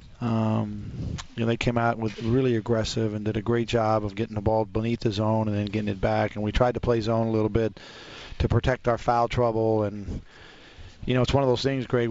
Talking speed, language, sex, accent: 245 wpm, English, male, American